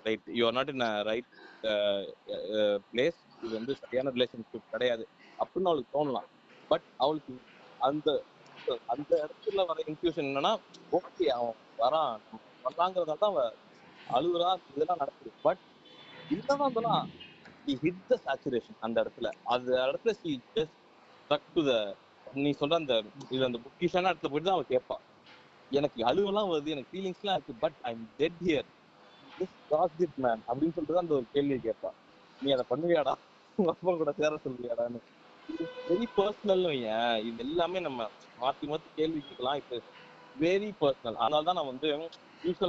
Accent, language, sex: native, Tamil, male